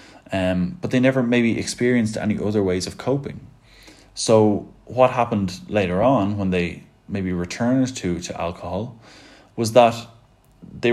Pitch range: 90-115 Hz